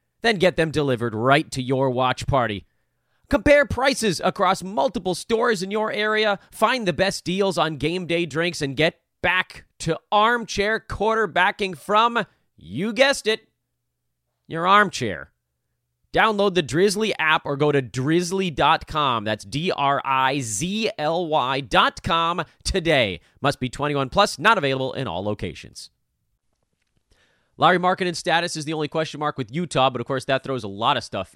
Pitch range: 115-175 Hz